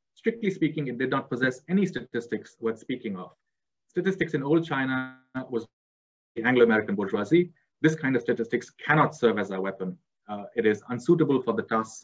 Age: 30-49